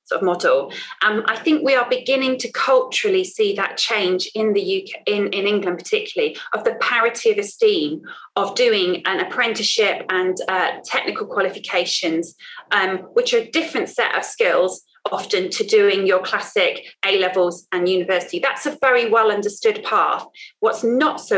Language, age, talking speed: English, 30-49, 170 wpm